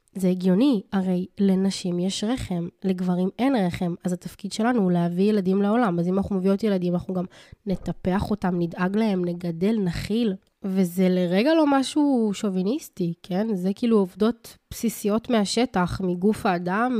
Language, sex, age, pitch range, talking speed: Hebrew, female, 20-39, 190-235 Hz, 150 wpm